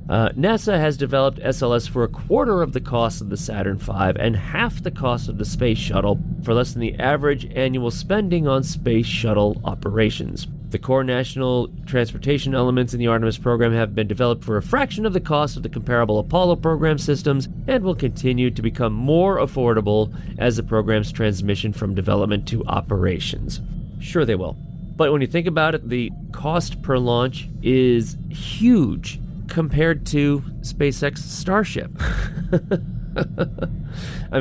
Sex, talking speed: male, 165 wpm